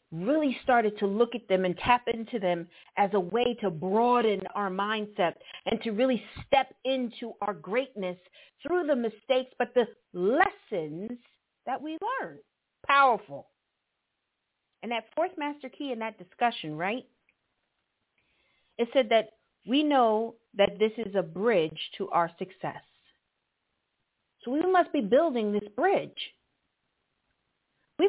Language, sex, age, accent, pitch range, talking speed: English, female, 50-69, American, 195-260 Hz, 135 wpm